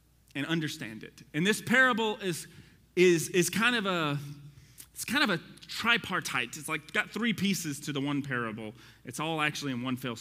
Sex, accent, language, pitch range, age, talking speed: male, American, English, 135-190 Hz, 30-49, 190 wpm